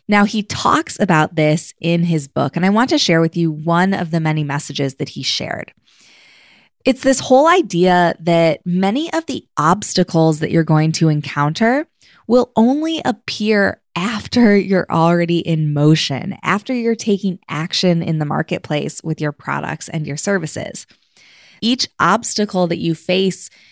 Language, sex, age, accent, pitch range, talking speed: English, female, 20-39, American, 155-200 Hz, 160 wpm